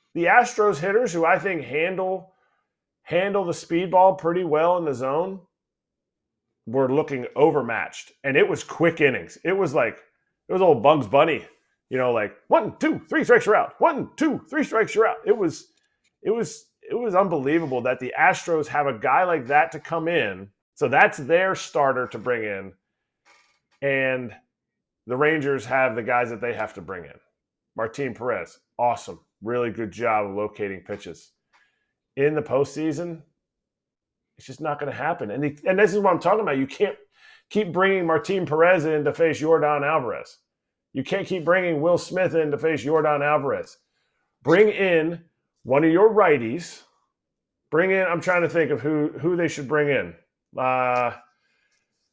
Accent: American